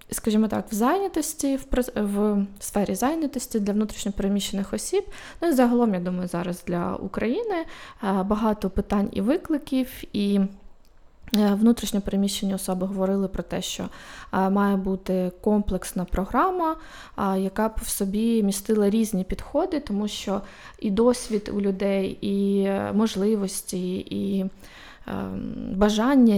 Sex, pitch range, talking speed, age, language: female, 195-230 Hz, 115 wpm, 20-39, Ukrainian